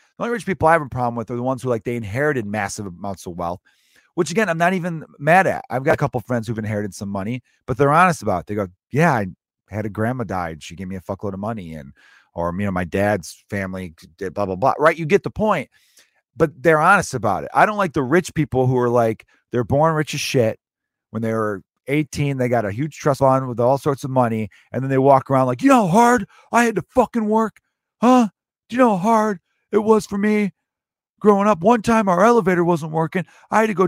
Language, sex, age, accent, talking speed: English, male, 40-59, American, 255 wpm